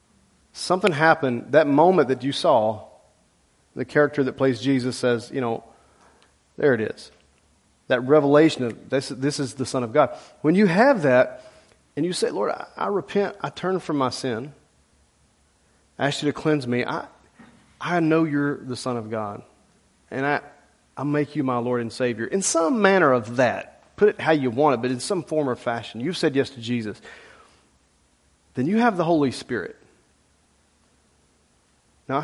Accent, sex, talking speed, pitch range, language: American, male, 180 wpm, 115-155 Hz, English